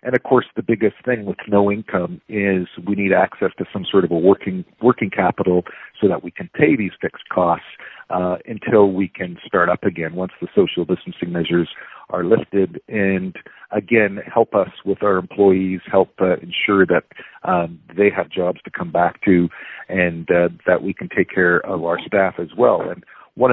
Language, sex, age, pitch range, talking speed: English, male, 50-69, 90-105 Hz, 195 wpm